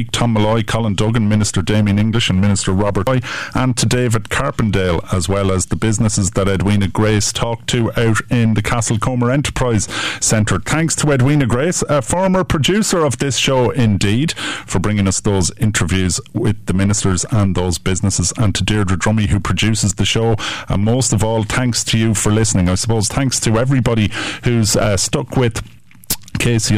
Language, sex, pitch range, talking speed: English, male, 100-130 Hz, 180 wpm